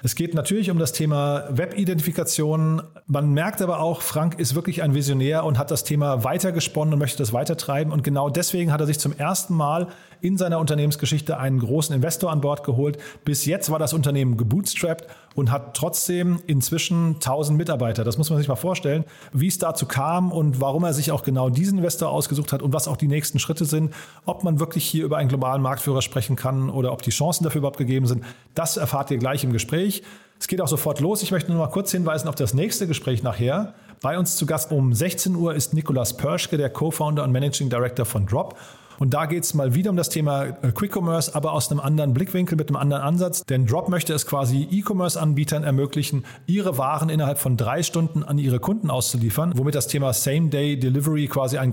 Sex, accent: male, German